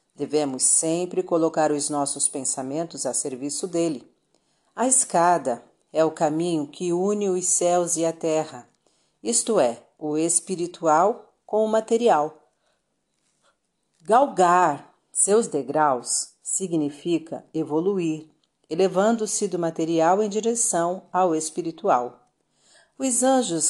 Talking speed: 105 wpm